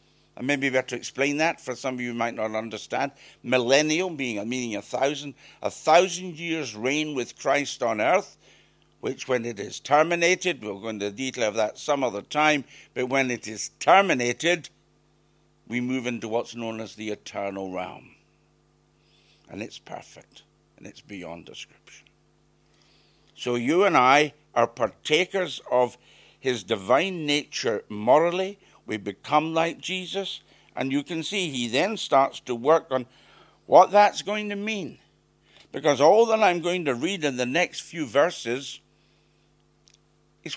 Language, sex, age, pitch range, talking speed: English, male, 60-79, 120-170 Hz, 160 wpm